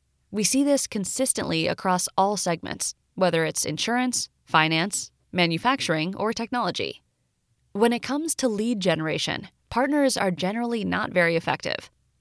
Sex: female